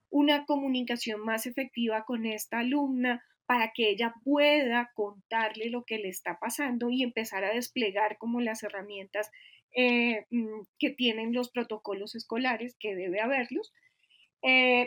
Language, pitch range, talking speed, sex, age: Spanish, 225-275 Hz, 135 wpm, female, 20-39